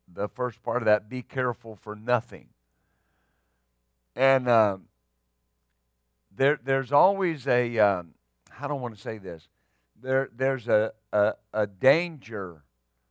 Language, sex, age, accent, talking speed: English, male, 50-69, American, 130 wpm